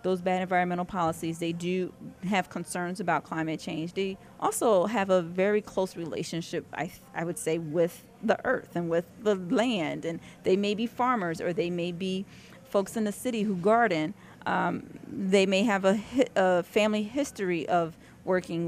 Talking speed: 175 wpm